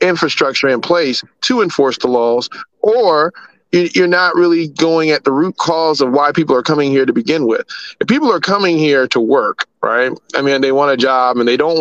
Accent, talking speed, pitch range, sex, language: American, 215 wpm, 125-150 Hz, male, English